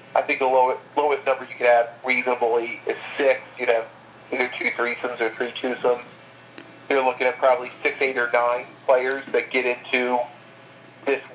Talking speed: 175 wpm